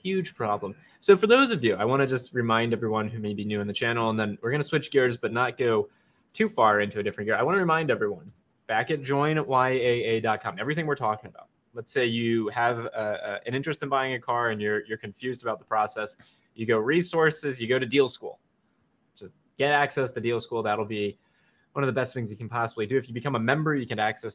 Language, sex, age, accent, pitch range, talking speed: English, male, 20-39, American, 110-145 Hz, 245 wpm